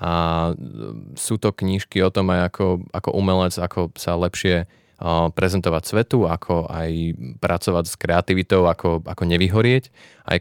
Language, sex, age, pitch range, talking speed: Slovak, male, 20-39, 85-105 Hz, 140 wpm